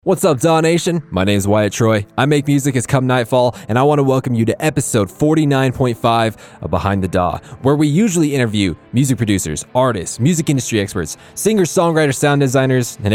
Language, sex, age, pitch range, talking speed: English, male, 20-39, 100-125 Hz, 195 wpm